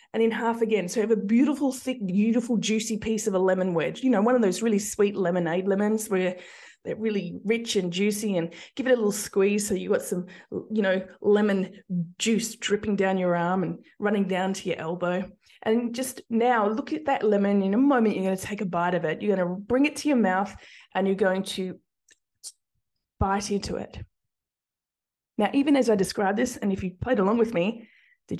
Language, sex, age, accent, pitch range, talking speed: English, female, 20-39, Australian, 190-235 Hz, 215 wpm